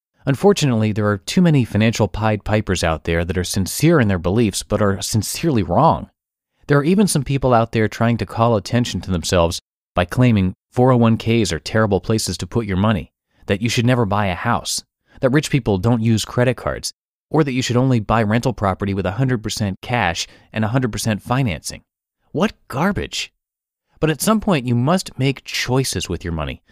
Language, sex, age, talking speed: English, male, 30-49, 190 wpm